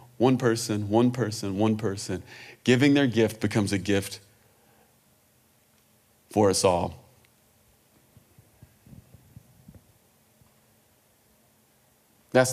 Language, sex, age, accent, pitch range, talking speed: English, male, 30-49, American, 115-160 Hz, 75 wpm